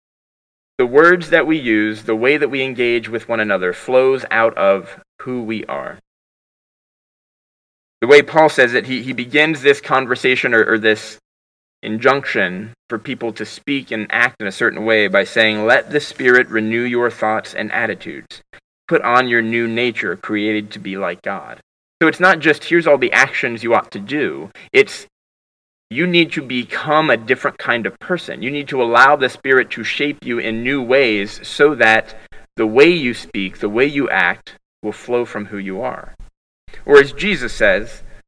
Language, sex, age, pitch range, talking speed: English, male, 30-49, 110-145 Hz, 185 wpm